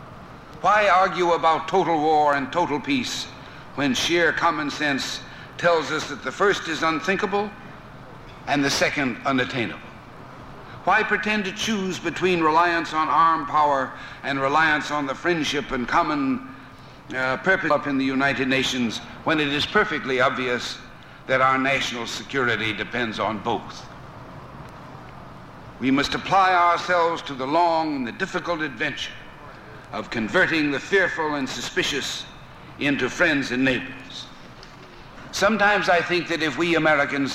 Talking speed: 140 wpm